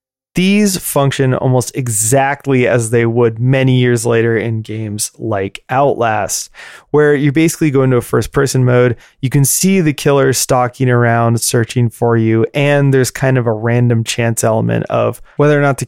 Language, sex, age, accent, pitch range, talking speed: English, male, 20-39, American, 115-135 Hz, 170 wpm